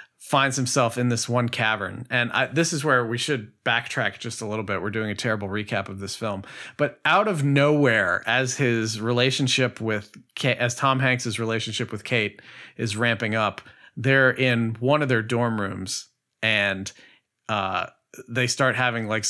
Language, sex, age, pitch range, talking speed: English, male, 40-59, 105-125 Hz, 175 wpm